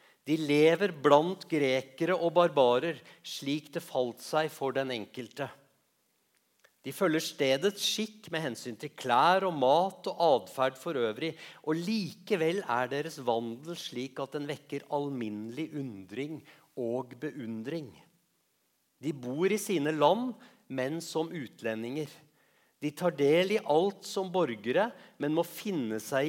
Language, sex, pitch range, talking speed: English, male, 135-180 Hz, 135 wpm